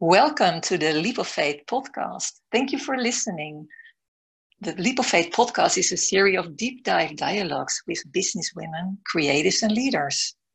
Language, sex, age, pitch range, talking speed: English, female, 60-79, 165-230 Hz, 165 wpm